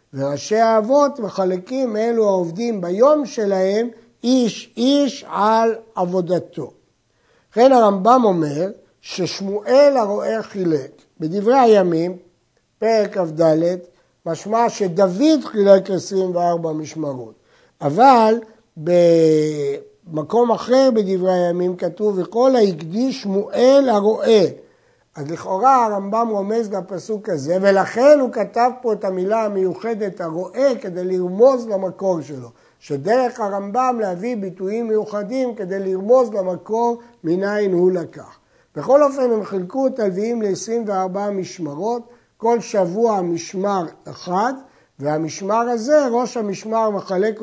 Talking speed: 105 wpm